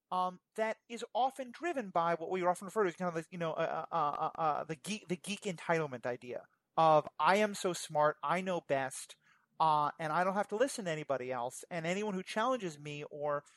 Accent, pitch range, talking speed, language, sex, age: American, 150-195 Hz, 225 wpm, English, male, 30-49